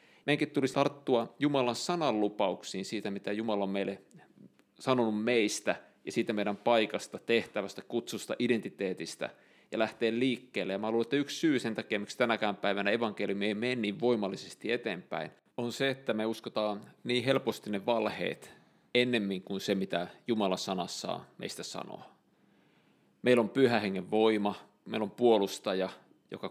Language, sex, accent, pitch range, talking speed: Finnish, male, native, 100-120 Hz, 145 wpm